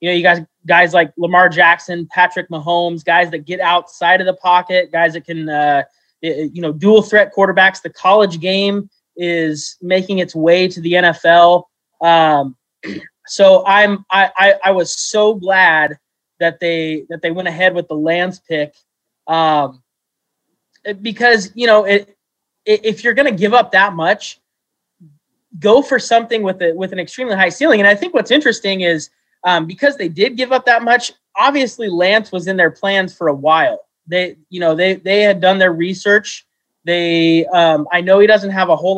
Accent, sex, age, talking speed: American, male, 20-39, 185 wpm